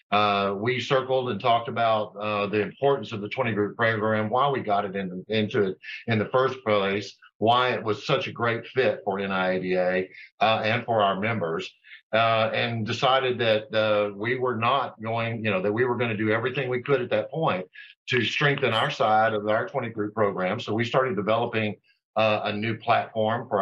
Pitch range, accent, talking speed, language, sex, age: 105-125 Hz, American, 205 wpm, English, male, 50-69